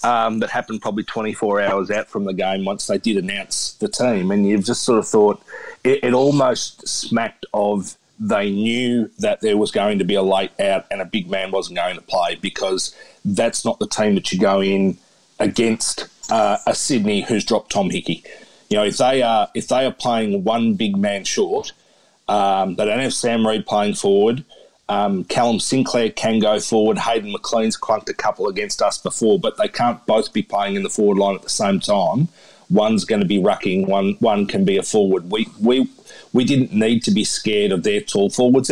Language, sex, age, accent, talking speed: English, male, 30-49, Australian, 210 wpm